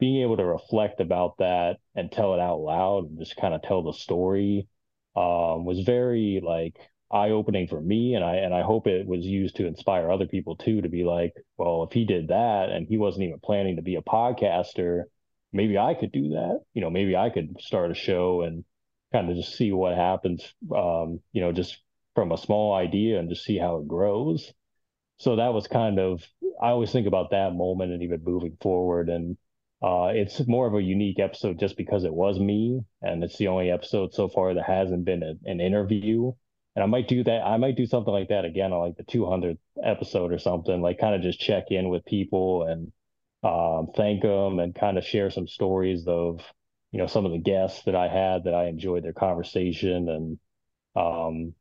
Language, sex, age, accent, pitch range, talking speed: English, male, 20-39, American, 85-105 Hz, 215 wpm